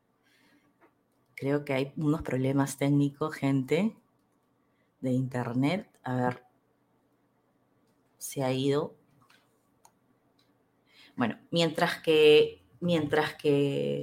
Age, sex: 20-39, female